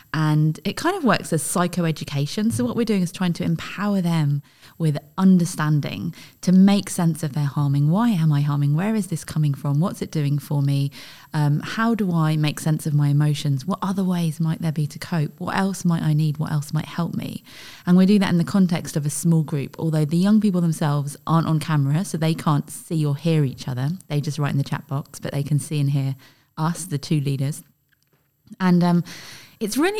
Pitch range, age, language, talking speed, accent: 150-185 Hz, 20-39, English, 225 wpm, British